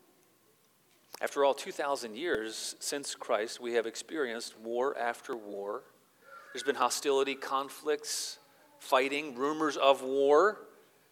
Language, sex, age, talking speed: English, male, 40-59, 110 wpm